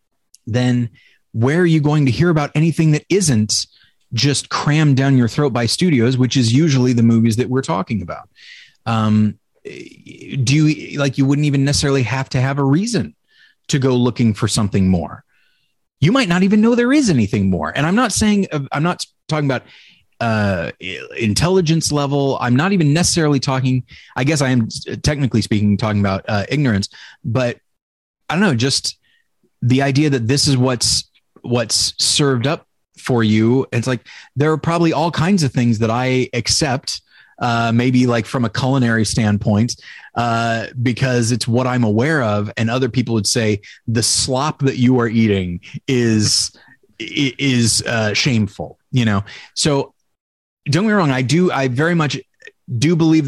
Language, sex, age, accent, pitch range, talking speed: English, male, 30-49, American, 115-145 Hz, 170 wpm